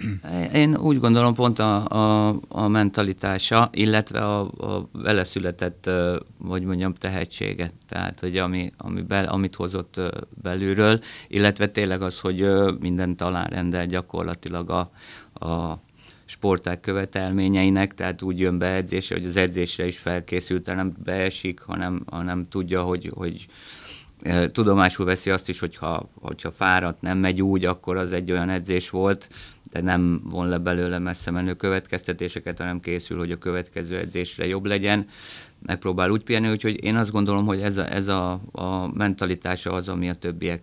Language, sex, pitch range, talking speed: Hungarian, male, 90-100 Hz, 150 wpm